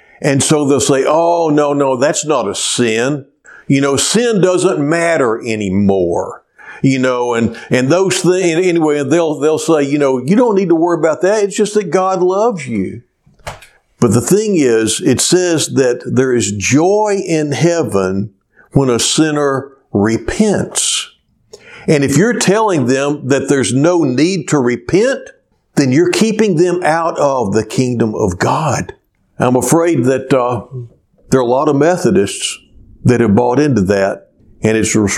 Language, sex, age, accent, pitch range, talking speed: English, male, 60-79, American, 120-165 Hz, 165 wpm